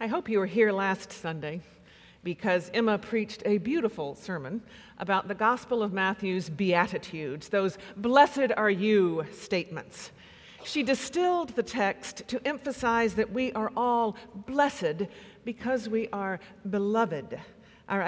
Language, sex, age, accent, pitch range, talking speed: English, female, 50-69, American, 195-240 Hz, 135 wpm